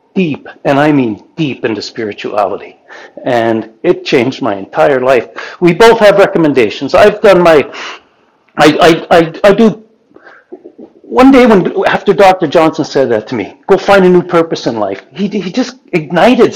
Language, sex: English, male